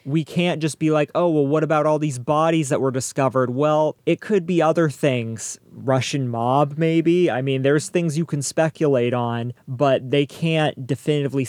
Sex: male